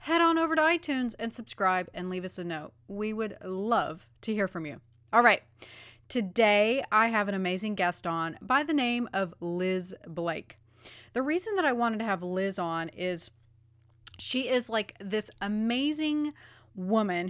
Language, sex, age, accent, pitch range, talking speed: English, female, 30-49, American, 170-230 Hz, 175 wpm